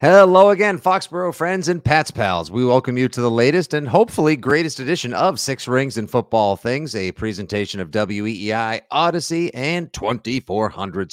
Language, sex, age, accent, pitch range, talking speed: English, male, 50-69, American, 105-130 Hz, 160 wpm